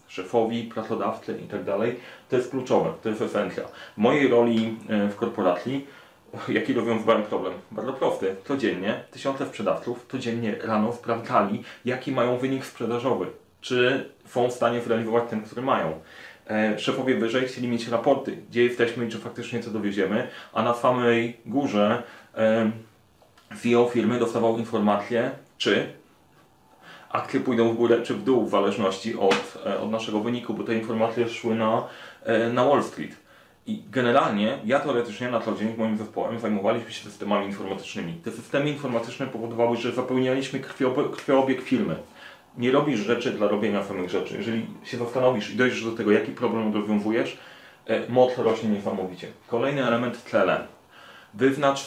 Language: Polish